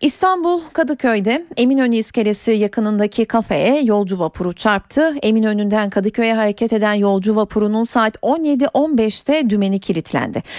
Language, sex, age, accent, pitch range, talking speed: Turkish, female, 40-59, native, 205-260 Hz, 110 wpm